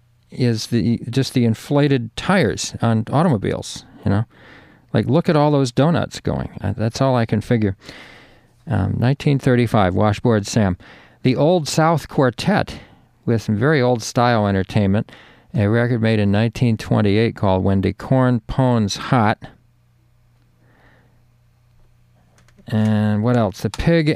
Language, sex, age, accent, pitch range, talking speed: English, male, 50-69, American, 110-130 Hz, 125 wpm